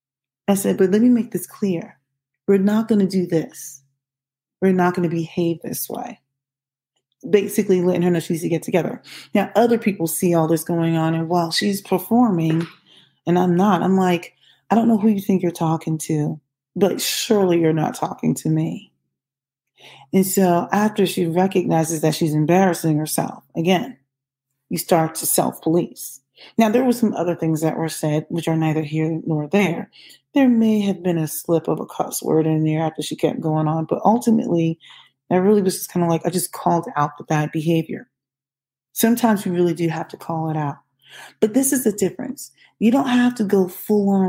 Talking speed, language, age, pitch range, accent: 200 wpm, English, 30-49, 155-210 Hz, American